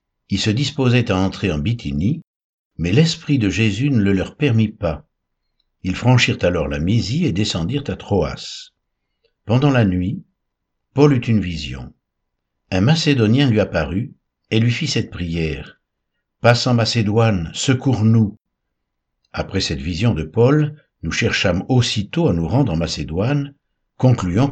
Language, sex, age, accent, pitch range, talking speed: French, male, 60-79, French, 90-125 Hz, 150 wpm